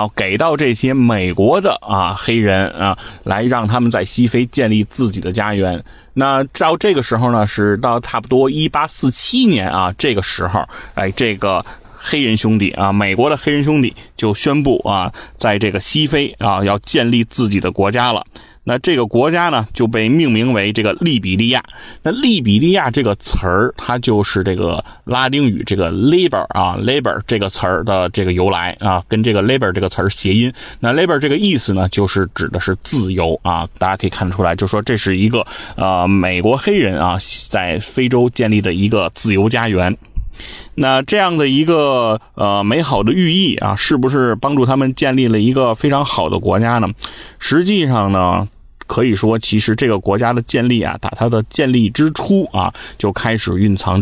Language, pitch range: Chinese, 100-130 Hz